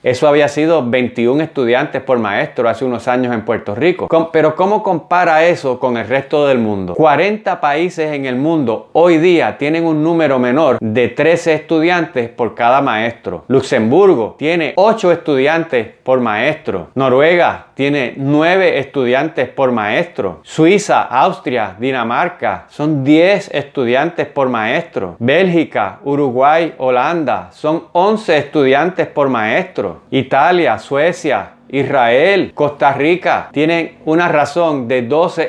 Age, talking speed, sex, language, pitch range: 30-49, 130 wpm, male, Spanish, 135-165 Hz